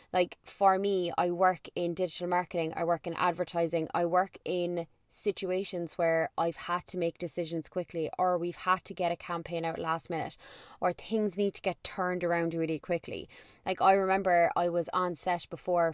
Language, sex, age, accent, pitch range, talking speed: English, female, 20-39, Irish, 165-185 Hz, 190 wpm